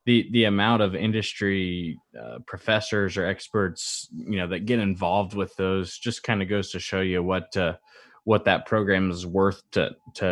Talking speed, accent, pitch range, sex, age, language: 185 wpm, American, 95-120 Hz, male, 20-39, English